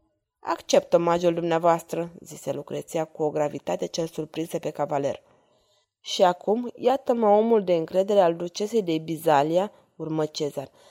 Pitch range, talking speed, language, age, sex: 170-250 Hz, 130 wpm, Romanian, 20-39, female